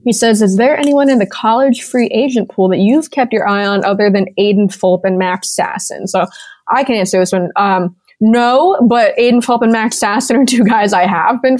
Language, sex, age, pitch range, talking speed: English, female, 20-39, 195-235 Hz, 230 wpm